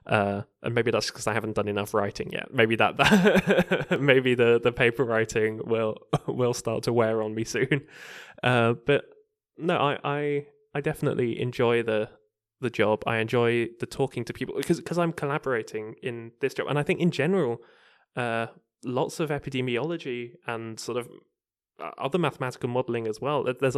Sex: male